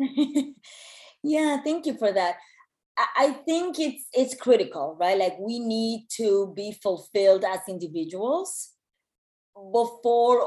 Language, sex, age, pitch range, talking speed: English, female, 30-49, 180-225 Hz, 115 wpm